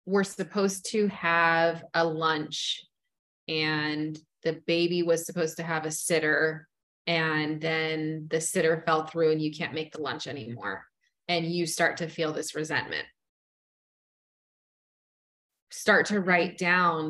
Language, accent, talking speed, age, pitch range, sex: English, American, 135 wpm, 20-39, 155-180 Hz, female